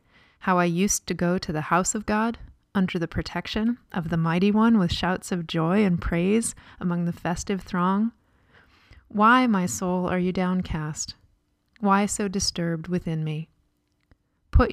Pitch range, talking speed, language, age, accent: 160-205 Hz, 160 wpm, English, 30-49, American